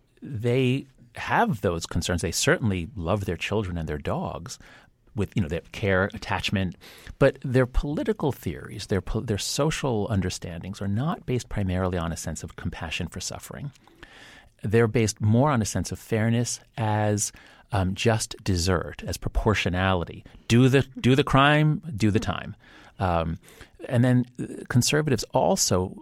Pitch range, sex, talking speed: 90-125 Hz, male, 150 wpm